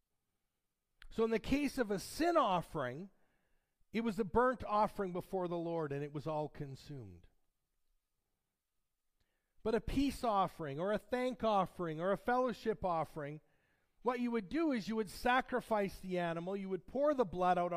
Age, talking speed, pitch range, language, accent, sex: 50-69, 165 wpm, 175-225 Hz, English, American, male